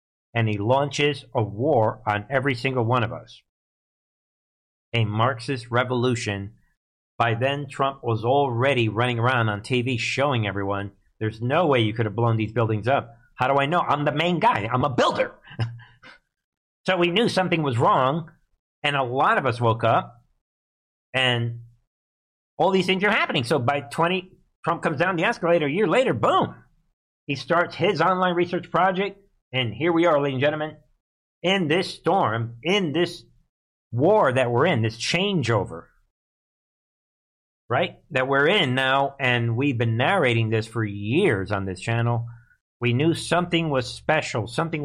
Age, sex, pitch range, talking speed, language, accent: 50-69, male, 115-145 Hz, 165 wpm, English, American